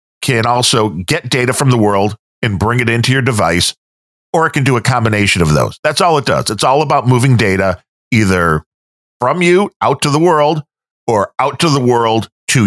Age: 40-59